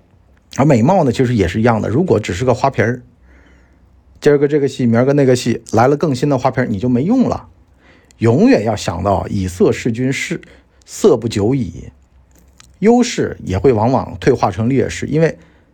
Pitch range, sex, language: 90-130 Hz, male, Chinese